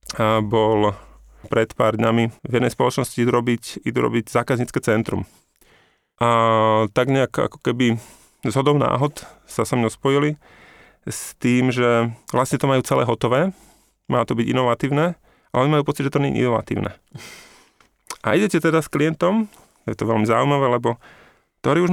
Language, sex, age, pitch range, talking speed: Slovak, male, 30-49, 115-155 Hz, 155 wpm